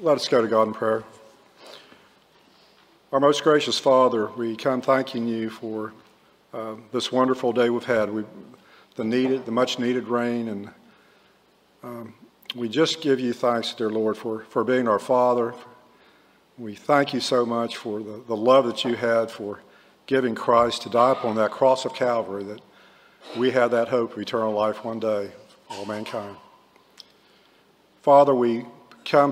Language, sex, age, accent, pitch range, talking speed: English, male, 50-69, American, 110-125 Hz, 165 wpm